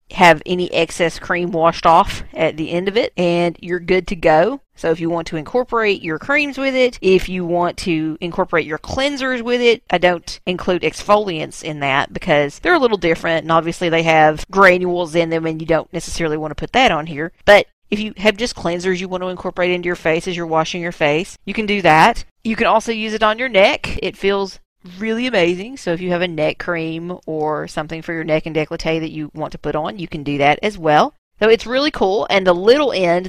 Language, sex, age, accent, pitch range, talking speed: English, female, 40-59, American, 160-210 Hz, 235 wpm